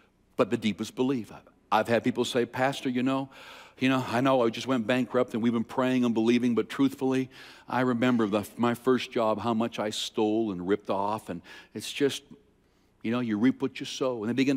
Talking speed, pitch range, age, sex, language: 220 wpm, 120-170 Hz, 60-79, male, English